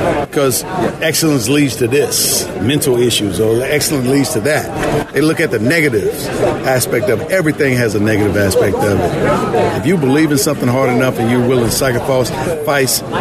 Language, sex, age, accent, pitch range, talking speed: English, male, 50-69, American, 125-150 Hz, 175 wpm